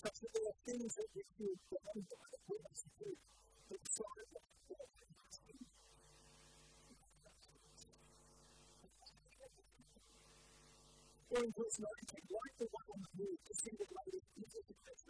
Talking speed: 90 wpm